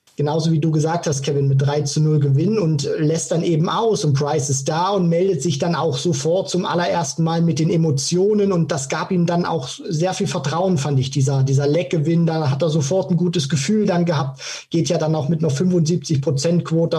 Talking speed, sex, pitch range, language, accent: 220 wpm, male, 150-175 Hz, German, German